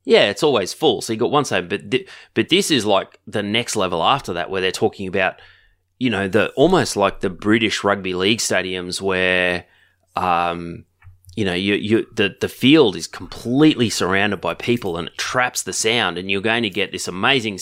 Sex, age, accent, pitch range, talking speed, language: male, 20-39, Australian, 95-120 Hz, 205 wpm, English